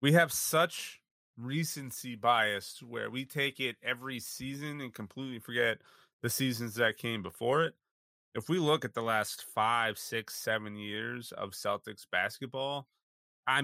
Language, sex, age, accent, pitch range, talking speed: English, male, 30-49, American, 105-130 Hz, 150 wpm